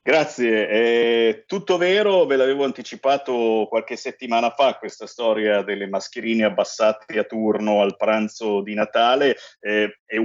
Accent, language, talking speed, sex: native, Italian, 135 wpm, male